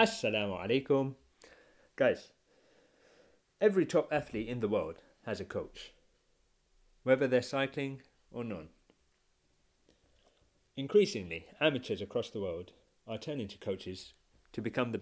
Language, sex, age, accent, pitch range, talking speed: English, male, 30-49, British, 105-140 Hz, 115 wpm